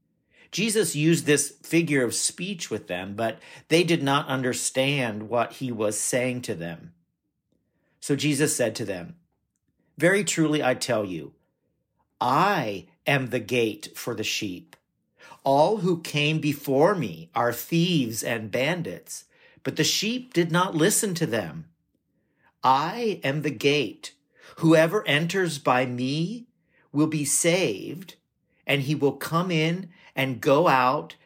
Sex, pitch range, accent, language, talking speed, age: male, 130-170 Hz, American, English, 140 wpm, 50-69